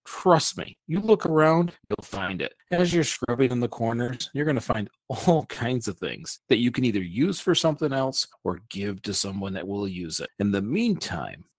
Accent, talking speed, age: American, 210 wpm, 40-59